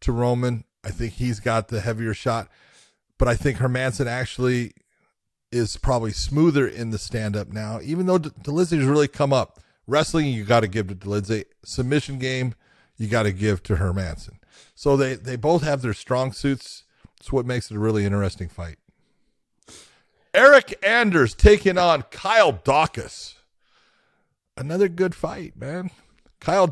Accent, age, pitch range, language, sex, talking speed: American, 40-59, 110-145 Hz, English, male, 160 wpm